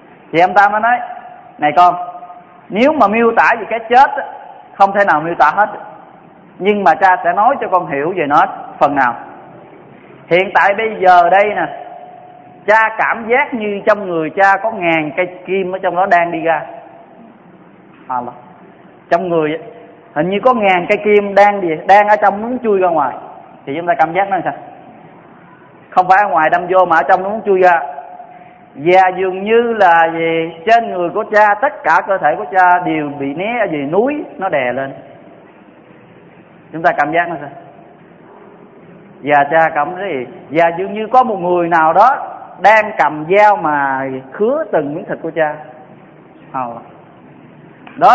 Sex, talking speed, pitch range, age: male, 185 wpm, 165-210 Hz, 20-39